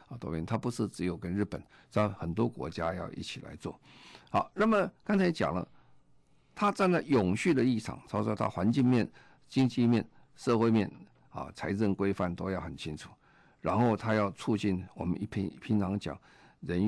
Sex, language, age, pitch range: male, Chinese, 50-69, 85-110 Hz